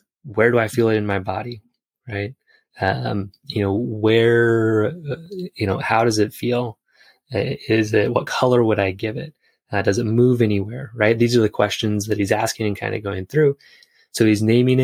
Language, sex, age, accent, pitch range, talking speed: English, male, 20-39, American, 105-125 Hz, 195 wpm